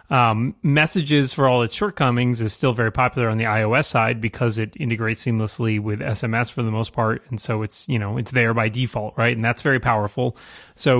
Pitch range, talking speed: 115-140 Hz, 215 wpm